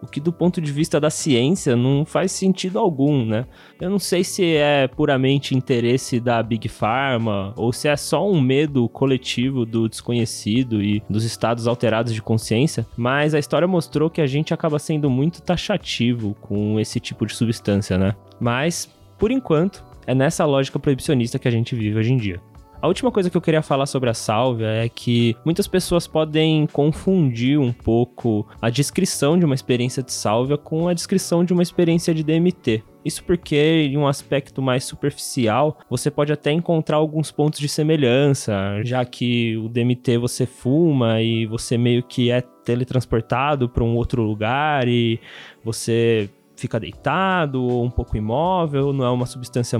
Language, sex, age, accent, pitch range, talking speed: Portuguese, male, 20-39, Brazilian, 115-155 Hz, 175 wpm